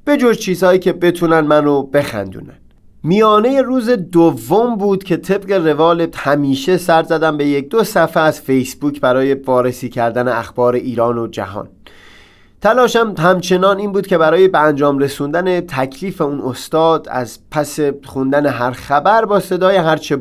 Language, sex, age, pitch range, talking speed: Persian, male, 30-49, 120-165 Hz, 150 wpm